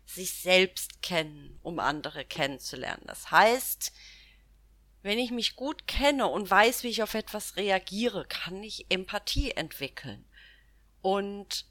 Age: 30-49